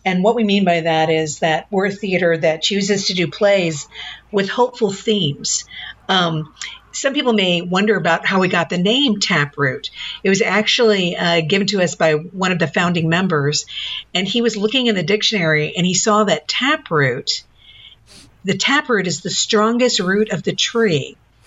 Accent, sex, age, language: American, female, 50-69, English